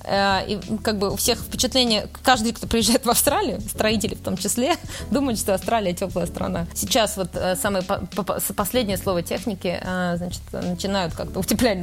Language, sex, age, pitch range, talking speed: Russian, female, 20-39, 190-240 Hz, 145 wpm